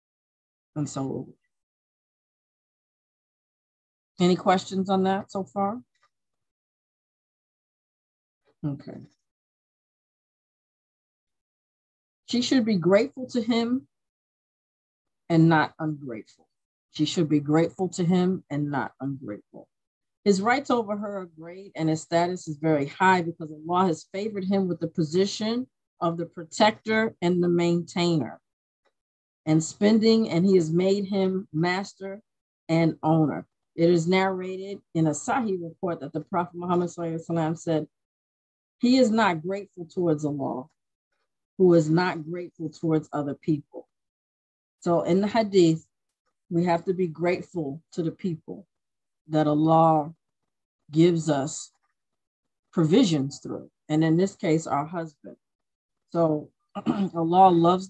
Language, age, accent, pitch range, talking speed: English, 40-59, American, 155-195 Hz, 120 wpm